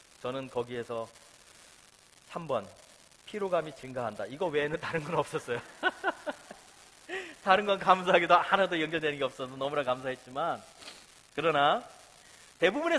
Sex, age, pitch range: male, 40-59, 140-225 Hz